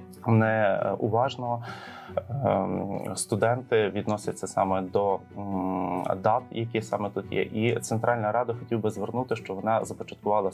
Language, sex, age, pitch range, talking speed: Ukrainian, male, 20-39, 95-115 Hz, 110 wpm